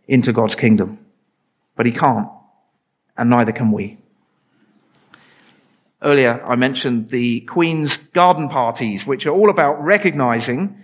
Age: 50-69